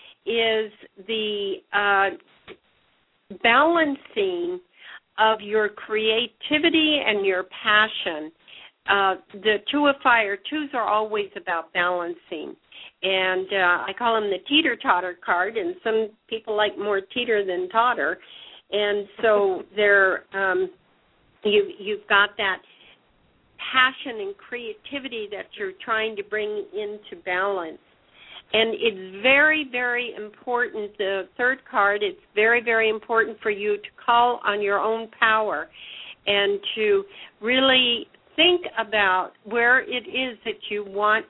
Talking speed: 120 wpm